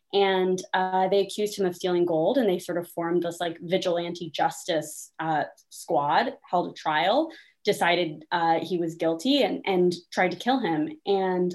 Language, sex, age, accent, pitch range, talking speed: English, female, 20-39, American, 175-215 Hz, 175 wpm